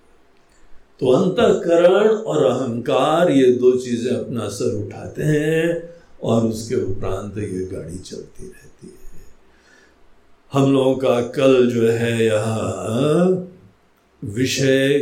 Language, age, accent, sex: Hindi, 60-79, native, male